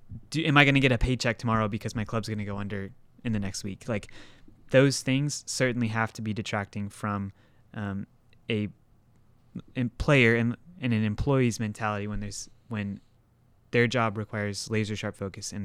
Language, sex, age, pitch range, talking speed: English, male, 20-39, 105-120 Hz, 185 wpm